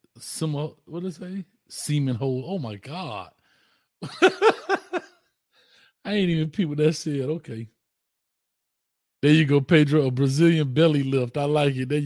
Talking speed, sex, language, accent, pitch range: 140 wpm, male, English, American, 115-140 Hz